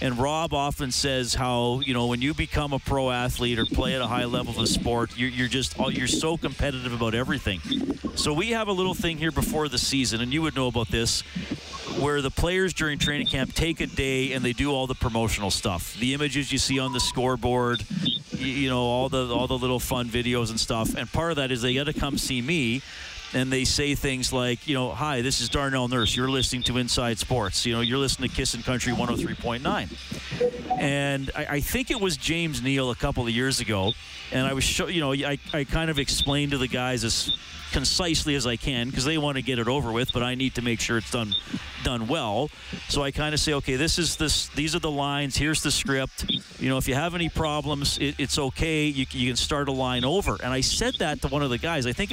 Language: English